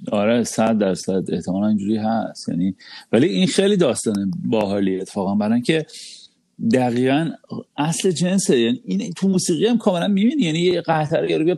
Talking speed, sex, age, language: 160 wpm, male, 40-59, Persian